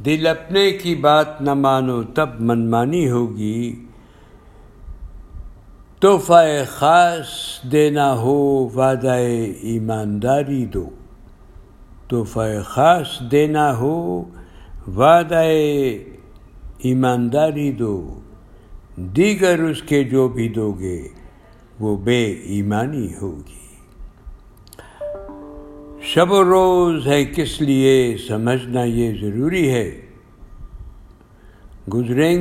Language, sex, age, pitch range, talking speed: Urdu, male, 60-79, 105-150 Hz, 80 wpm